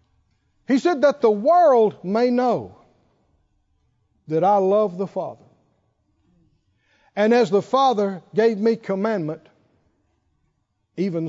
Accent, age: American, 60-79